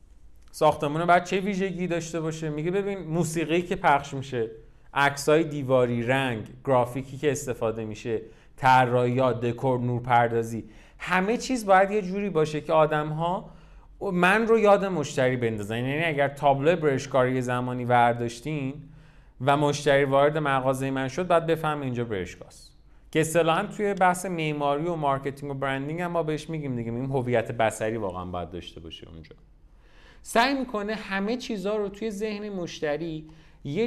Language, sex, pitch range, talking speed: Persian, male, 120-165 Hz, 150 wpm